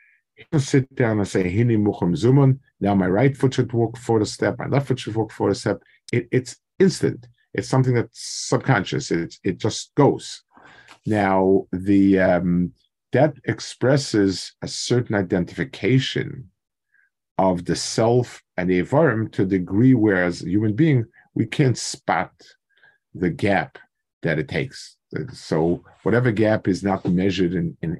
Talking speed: 150 wpm